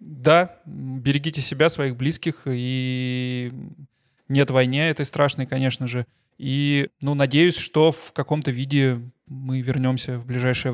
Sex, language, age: male, Russian, 20-39